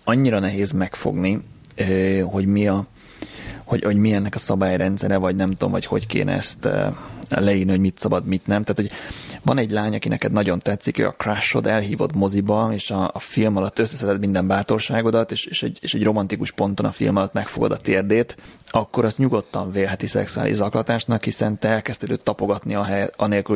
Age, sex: 30-49, male